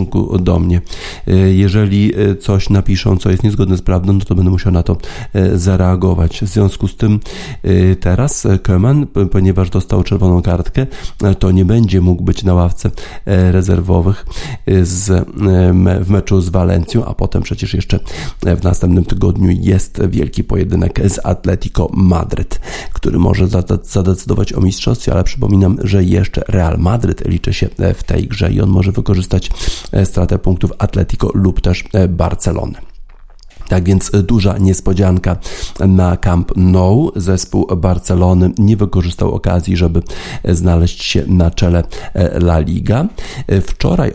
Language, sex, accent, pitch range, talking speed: Polish, male, native, 90-100 Hz, 135 wpm